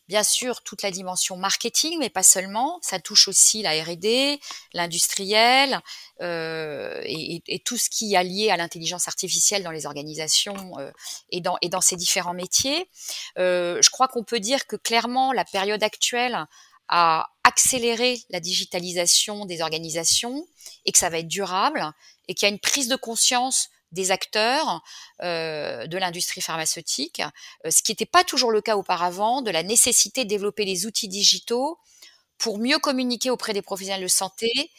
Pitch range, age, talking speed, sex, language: 180-245 Hz, 40-59, 170 wpm, female, French